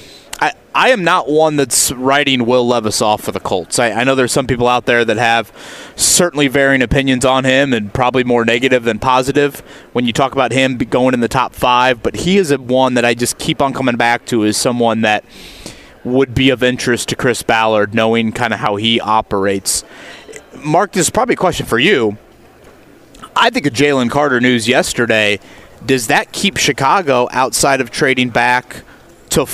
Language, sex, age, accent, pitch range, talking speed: English, male, 30-49, American, 120-145 Hz, 200 wpm